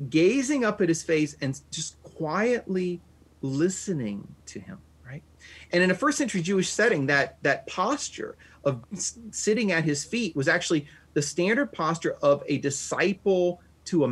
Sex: male